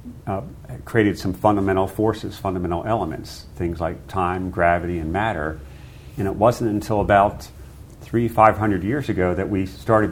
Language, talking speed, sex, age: English, 155 wpm, male, 50-69